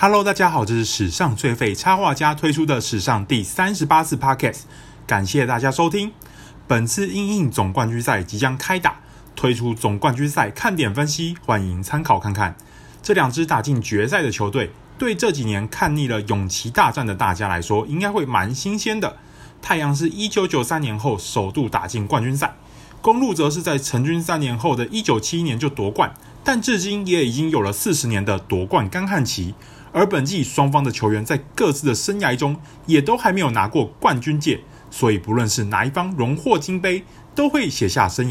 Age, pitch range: 20-39, 110-170 Hz